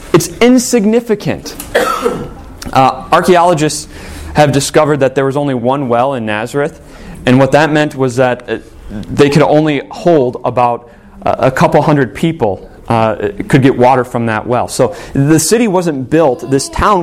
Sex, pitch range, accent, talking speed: male, 125-165 Hz, American, 155 wpm